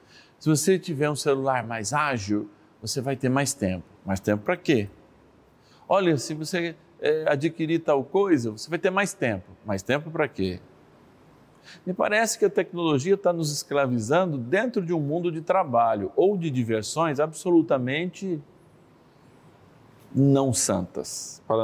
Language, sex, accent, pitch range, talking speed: Portuguese, male, Brazilian, 110-160 Hz, 145 wpm